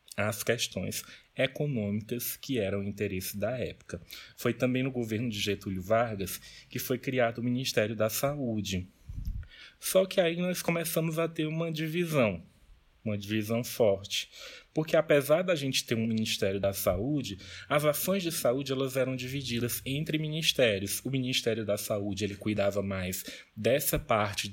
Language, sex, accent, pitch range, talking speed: Portuguese, male, Brazilian, 105-135 Hz, 150 wpm